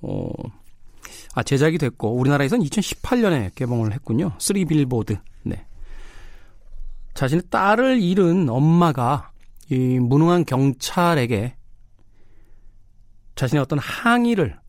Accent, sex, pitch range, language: native, male, 105-165 Hz, Korean